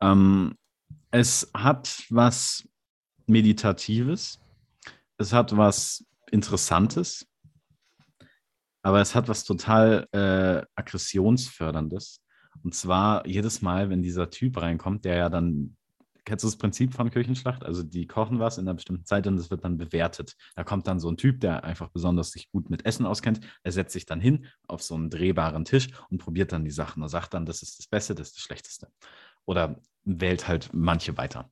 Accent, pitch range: German, 85-115 Hz